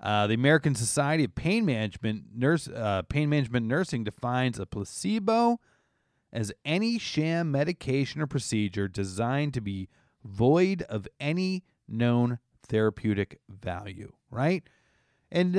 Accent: American